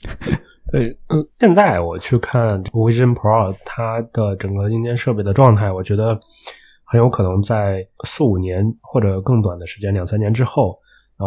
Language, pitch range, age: Chinese, 95-115 Hz, 20-39